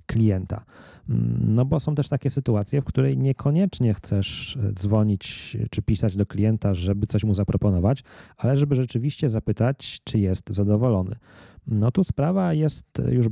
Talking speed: 145 wpm